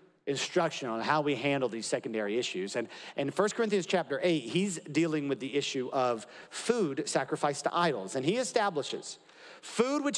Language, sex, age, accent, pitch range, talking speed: English, male, 40-59, American, 160-230 Hz, 170 wpm